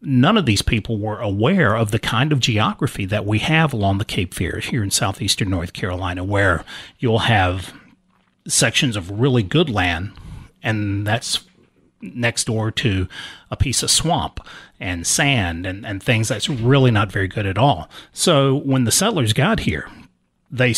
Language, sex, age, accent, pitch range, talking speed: English, male, 40-59, American, 100-130 Hz, 170 wpm